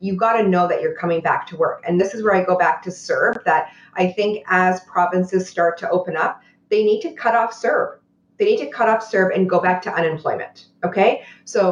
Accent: American